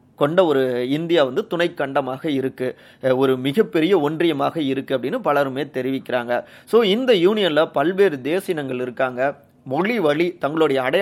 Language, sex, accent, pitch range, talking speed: Tamil, male, native, 130-170 Hz, 120 wpm